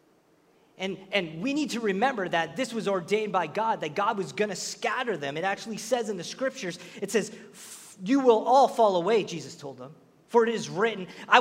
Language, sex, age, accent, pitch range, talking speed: English, male, 30-49, American, 205-255 Hz, 205 wpm